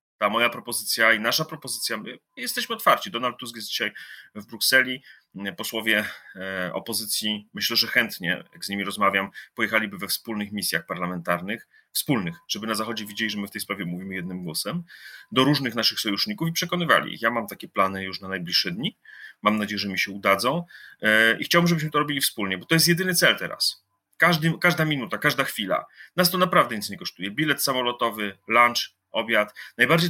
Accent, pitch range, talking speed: native, 105-165 Hz, 175 wpm